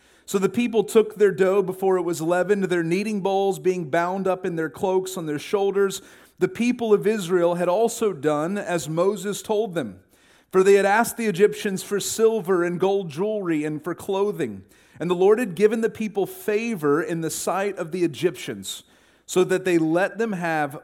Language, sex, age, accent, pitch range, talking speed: English, male, 40-59, American, 165-205 Hz, 195 wpm